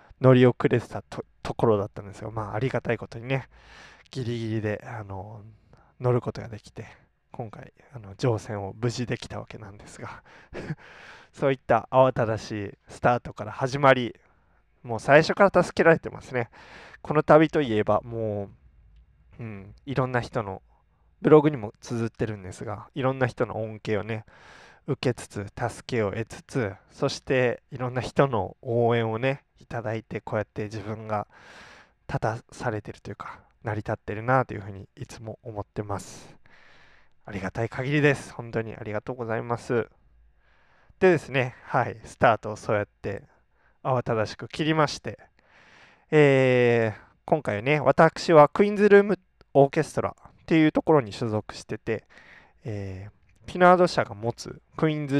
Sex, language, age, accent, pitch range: male, Japanese, 20-39, native, 105-135 Hz